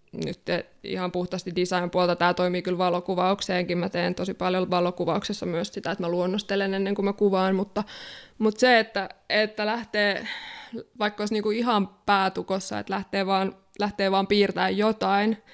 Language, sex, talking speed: Finnish, female, 160 wpm